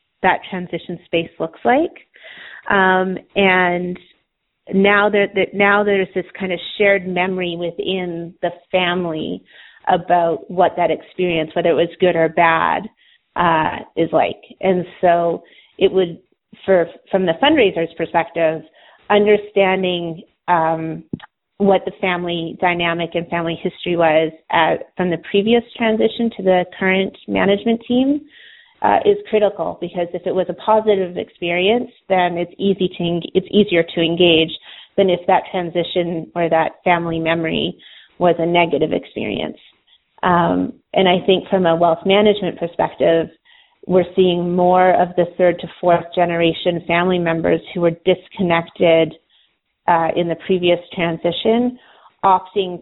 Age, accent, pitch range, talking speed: 30-49, American, 170-195 Hz, 135 wpm